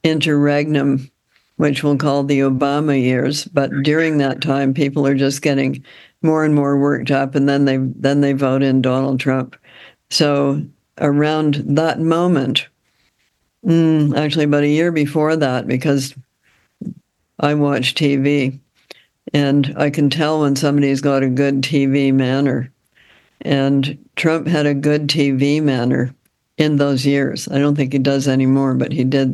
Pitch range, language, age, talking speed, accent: 135-145 Hz, English, 60-79, 150 wpm, American